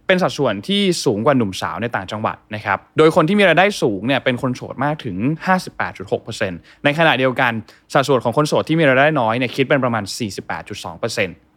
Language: Thai